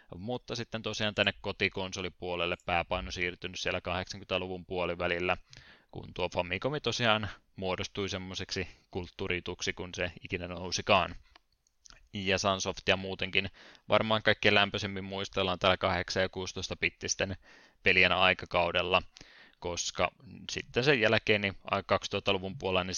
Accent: native